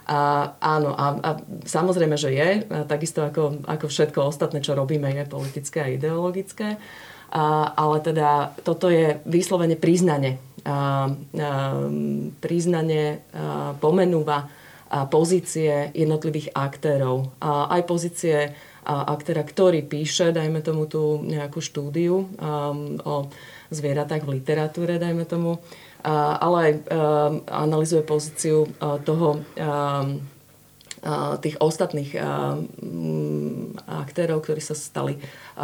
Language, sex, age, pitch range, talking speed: Slovak, female, 30-49, 145-165 Hz, 100 wpm